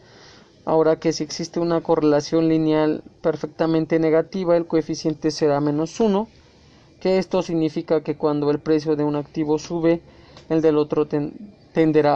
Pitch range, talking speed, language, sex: 150-165 Hz, 145 wpm, Spanish, male